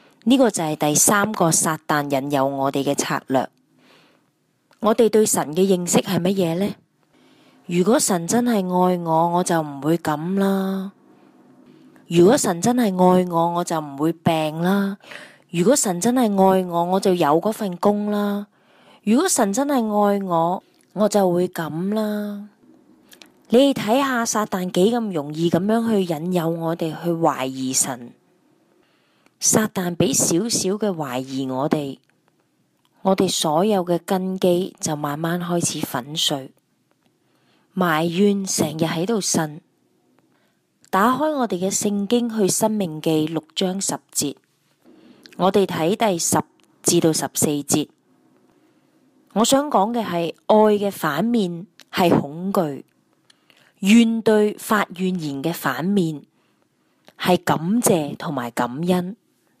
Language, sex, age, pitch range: English, female, 20-39, 165-210 Hz